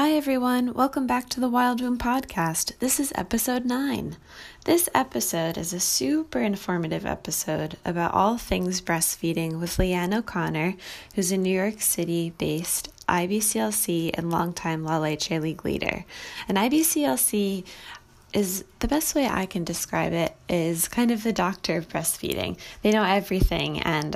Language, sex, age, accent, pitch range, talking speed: English, female, 20-39, American, 170-230 Hz, 150 wpm